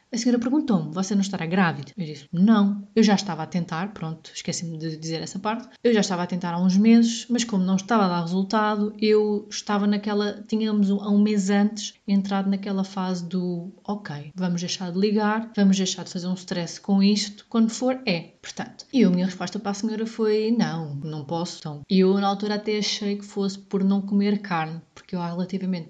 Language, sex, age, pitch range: Portuguese, female, 20-39, 175-210 Hz